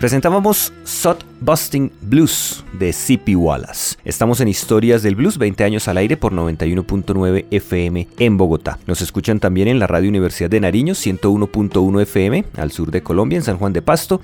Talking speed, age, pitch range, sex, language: 175 wpm, 30-49, 95-125 Hz, male, Spanish